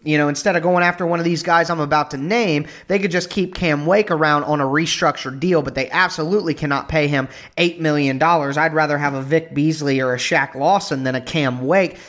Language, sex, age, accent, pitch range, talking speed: English, male, 30-49, American, 145-180 Hz, 235 wpm